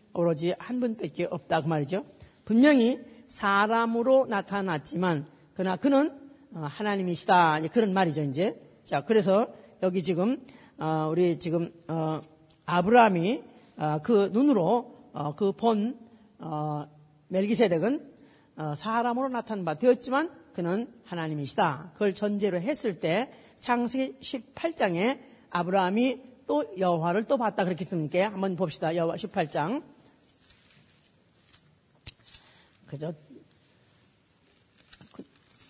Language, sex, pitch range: Korean, female, 175-240 Hz